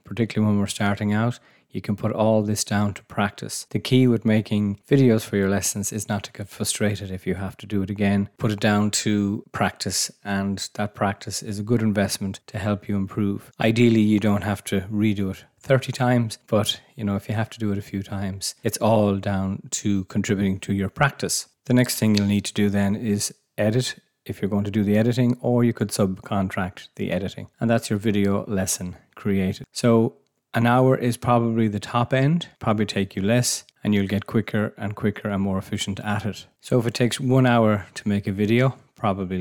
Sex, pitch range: male, 100-120 Hz